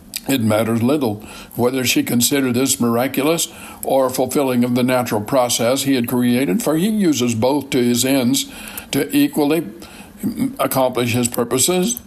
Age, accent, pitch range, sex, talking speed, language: 60-79, American, 120-170 Hz, male, 145 wpm, English